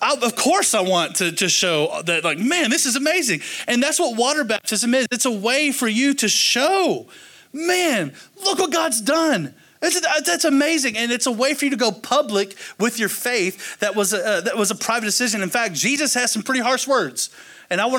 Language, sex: English, male